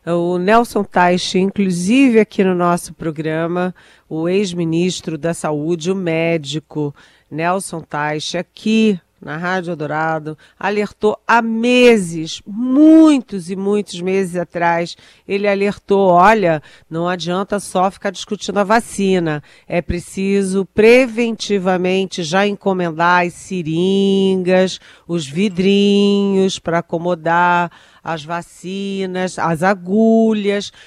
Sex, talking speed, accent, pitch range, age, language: female, 105 wpm, Brazilian, 170-210 Hz, 40-59, Portuguese